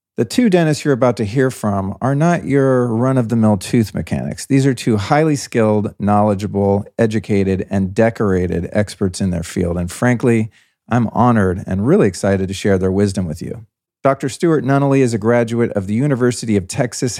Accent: American